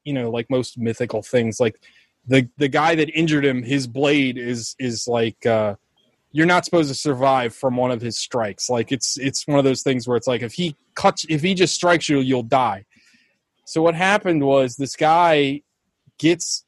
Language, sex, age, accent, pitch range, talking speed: English, male, 20-39, American, 130-165 Hz, 200 wpm